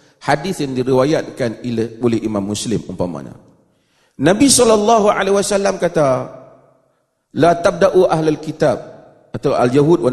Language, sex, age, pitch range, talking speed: Malay, male, 40-59, 135-215 Hz, 100 wpm